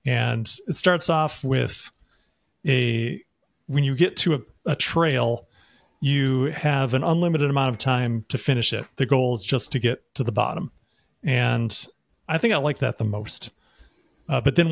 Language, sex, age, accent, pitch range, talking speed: English, male, 40-59, American, 125-155 Hz, 175 wpm